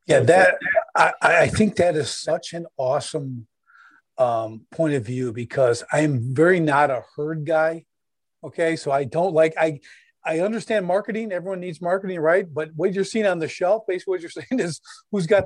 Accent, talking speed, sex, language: American, 185 wpm, male, English